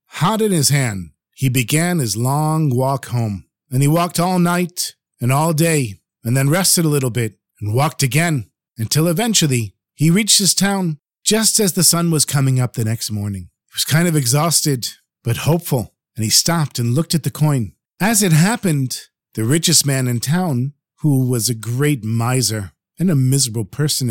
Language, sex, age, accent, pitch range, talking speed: English, male, 40-59, American, 125-175 Hz, 185 wpm